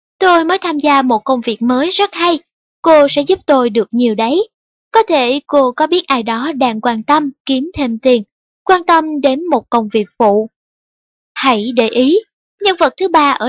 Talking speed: 200 wpm